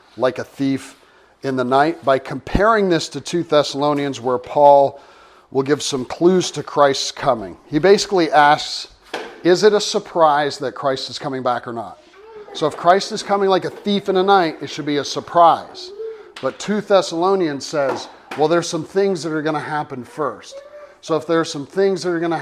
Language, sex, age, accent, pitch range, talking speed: English, male, 40-59, American, 135-180 Hz, 200 wpm